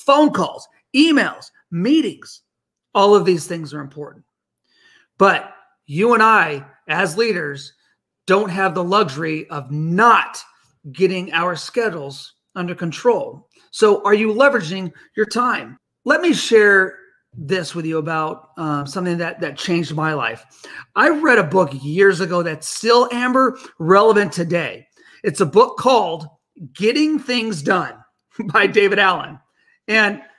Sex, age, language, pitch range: male, 40-59, English, 170-240 Hz